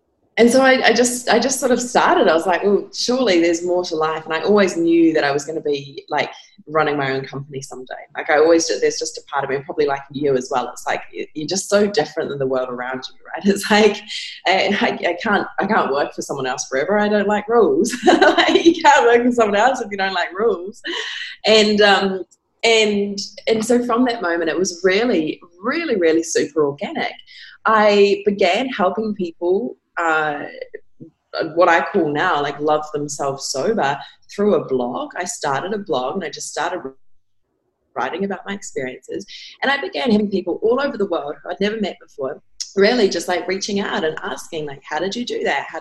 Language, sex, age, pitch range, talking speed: English, female, 20-39, 160-230 Hz, 210 wpm